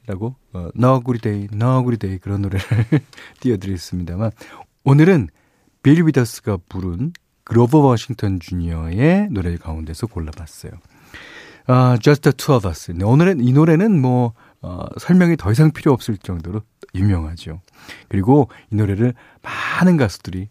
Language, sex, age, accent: Korean, male, 40-59, native